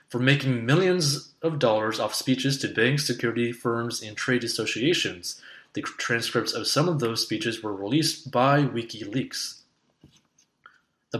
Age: 20-39